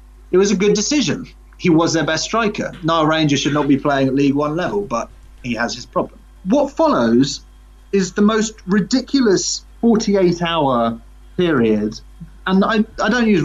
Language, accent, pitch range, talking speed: English, British, 135-210 Hz, 175 wpm